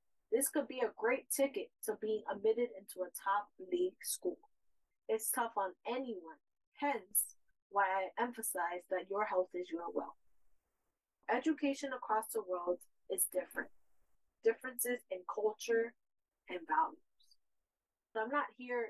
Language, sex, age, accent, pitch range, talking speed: English, female, 20-39, American, 195-265 Hz, 135 wpm